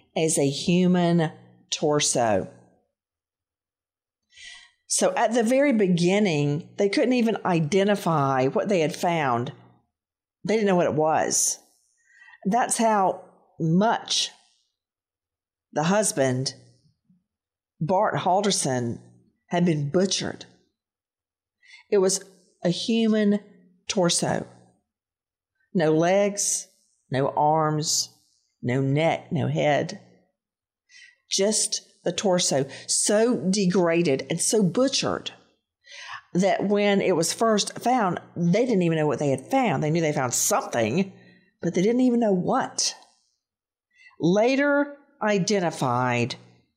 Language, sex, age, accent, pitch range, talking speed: English, female, 50-69, American, 140-210 Hz, 105 wpm